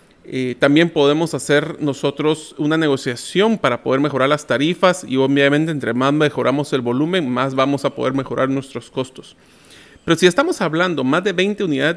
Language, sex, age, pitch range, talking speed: Spanish, male, 40-59, 135-170 Hz, 170 wpm